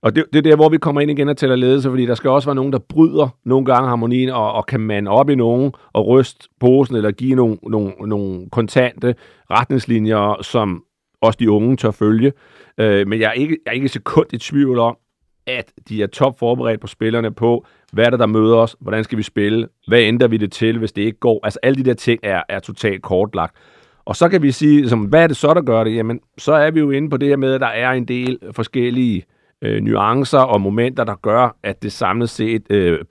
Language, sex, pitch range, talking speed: Danish, male, 110-135 Hz, 235 wpm